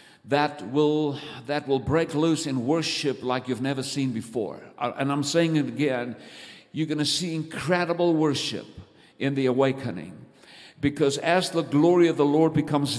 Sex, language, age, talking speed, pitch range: male, English, 50-69, 160 wpm, 130-155 Hz